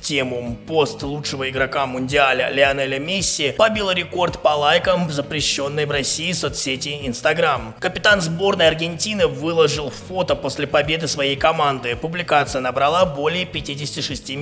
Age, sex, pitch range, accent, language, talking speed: 20-39, male, 135-170 Hz, native, Russian, 125 wpm